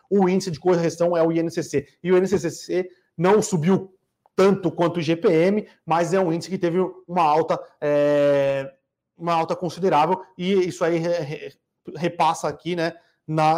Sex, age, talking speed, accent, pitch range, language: male, 30-49, 145 wpm, Brazilian, 160-185 Hz, Portuguese